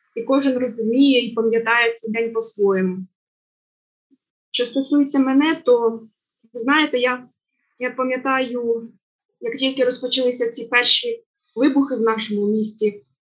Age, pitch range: 20-39, 225-275 Hz